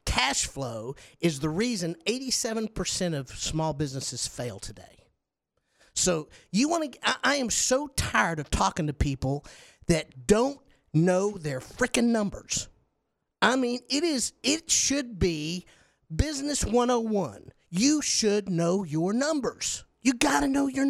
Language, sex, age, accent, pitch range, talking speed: English, male, 50-69, American, 160-245 Hz, 140 wpm